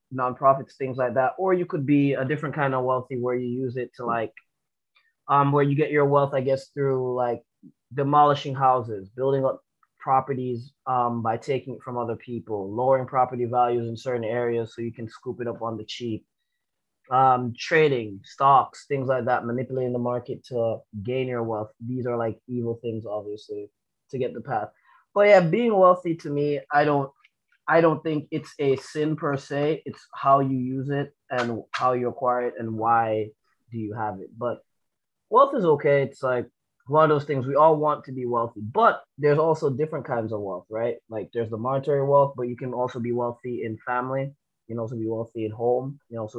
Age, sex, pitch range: 20-39, male, 115-140 Hz